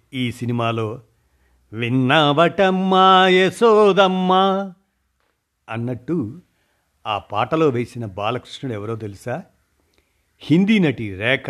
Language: Telugu